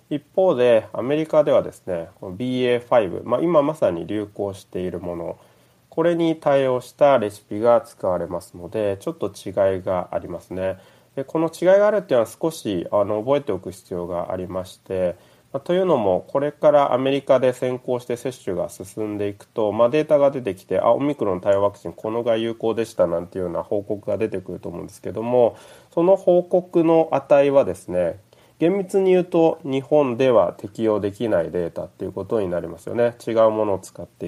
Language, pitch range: Japanese, 100-140 Hz